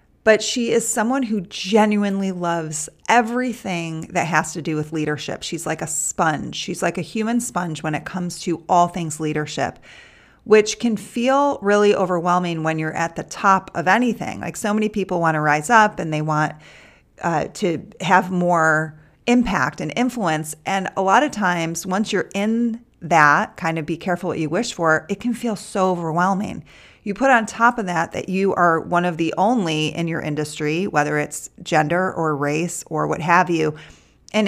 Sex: female